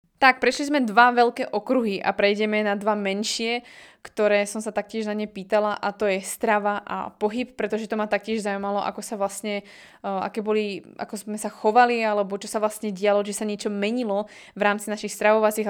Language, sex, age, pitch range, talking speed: Slovak, female, 20-39, 195-220 Hz, 195 wpm